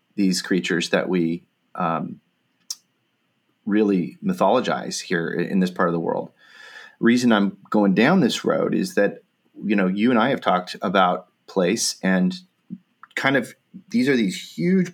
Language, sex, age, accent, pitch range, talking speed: English, male, 30-49, American, 95-125 Hz, 155 wpm